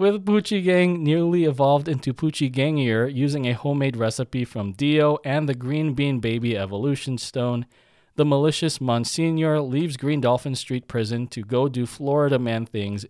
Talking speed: 160 wpm